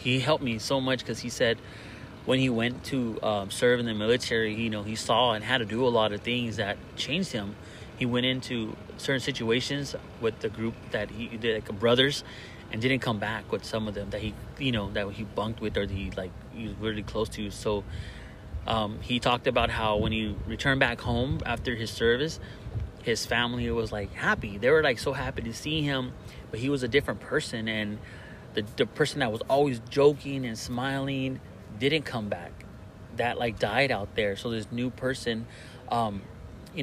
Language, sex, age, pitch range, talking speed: English, male, 30-49, 105-130 Hz, 205 wpm